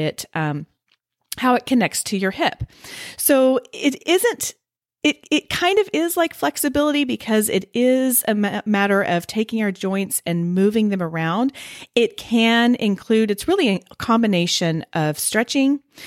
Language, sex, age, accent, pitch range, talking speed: English, female, 40-59, American, 165-230 Hz, 155 wpm